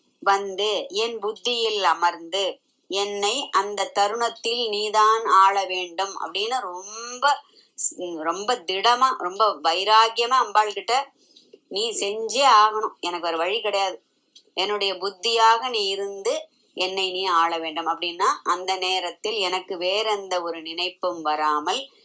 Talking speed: 110 wpm